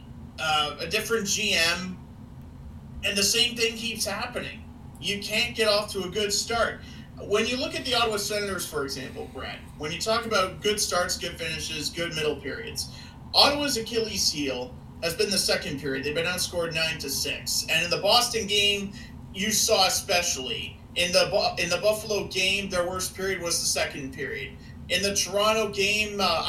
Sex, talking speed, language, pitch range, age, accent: male, 180 wpm, English, 165-215 Hz, 40-59, American